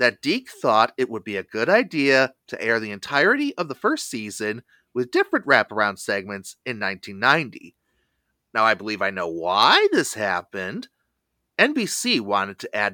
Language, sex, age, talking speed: English, male, 30-49, 160 wpm